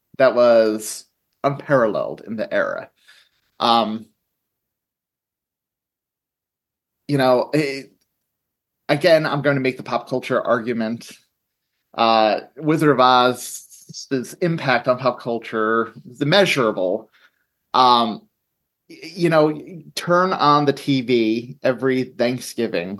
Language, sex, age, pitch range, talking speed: English, male, 30-49, 115-140 Hz, 95 wpm